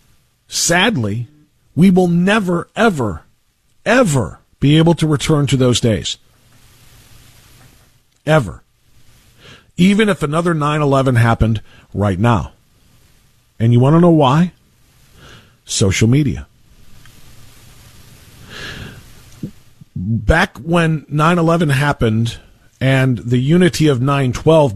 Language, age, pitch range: English, 40-59, 120-180 Hz